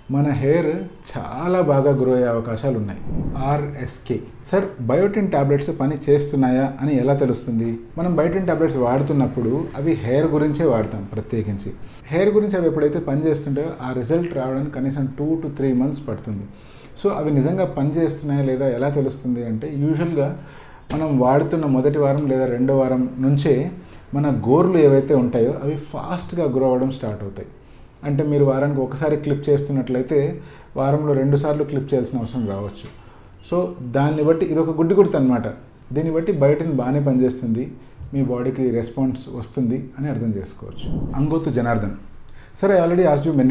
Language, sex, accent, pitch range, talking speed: English, male, Indian, 125-150 Hz, 85 wpm